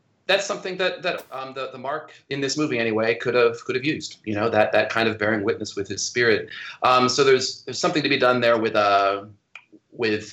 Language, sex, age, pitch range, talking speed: English, male, 30-49, 105-130 Hz, 240 wpm